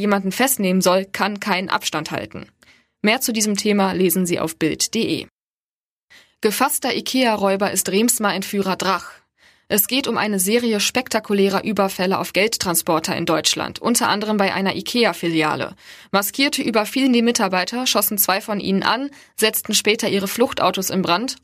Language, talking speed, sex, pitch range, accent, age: German, 150 wpm, female, 185-215 Hz, German, 20-39